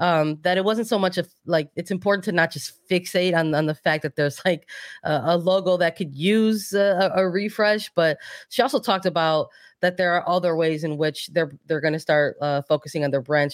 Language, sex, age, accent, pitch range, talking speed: English, female, 20-39, American, 145-180 Hz, 230 wpm